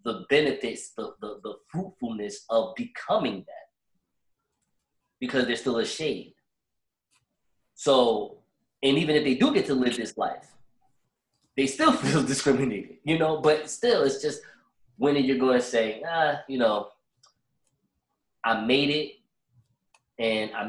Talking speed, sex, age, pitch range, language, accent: 135 wpm, male, 20-39, 120-170 Hz, English, American